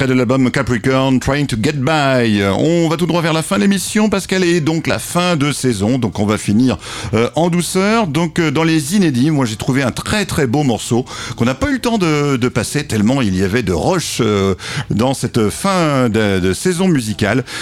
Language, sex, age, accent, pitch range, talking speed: French, male, 50-69, French, 125-170 Hz, 235 wpm